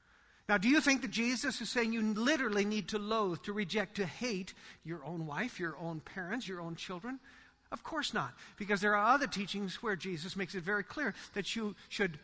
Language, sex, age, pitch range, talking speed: English, male, 50-69, 205-255 Hz, 210 wpm